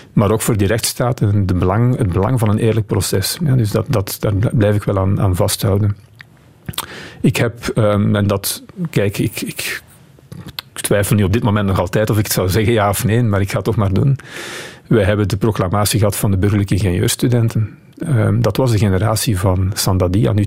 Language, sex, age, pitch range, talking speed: Dutch, male, 40-59, 100-125 Hz, 210 wpm